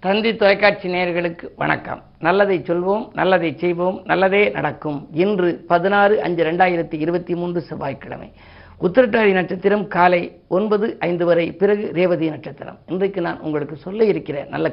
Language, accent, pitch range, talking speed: Tamil, native, 160-200 Hz, 120 wpm